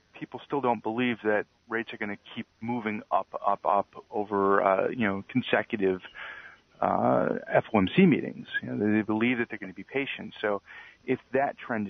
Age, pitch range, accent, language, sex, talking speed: 40-59, 100-115 Hz, American, English, male, 180 wpm